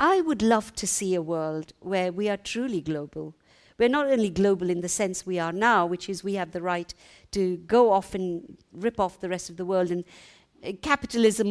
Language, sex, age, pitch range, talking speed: English, female, 50-69, 185-245 Hz, 220 wpm